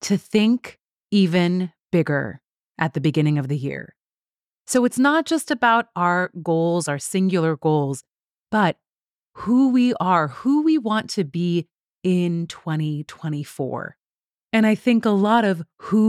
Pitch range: 160-225 Hz